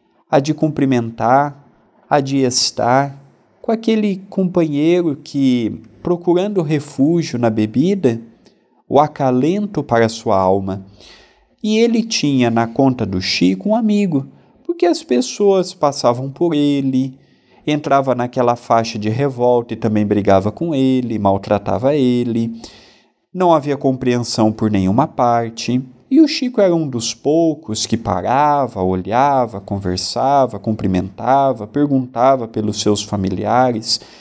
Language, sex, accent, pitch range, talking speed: Portuguese, male, Brazilian, 110-160 Hz, 120 wpm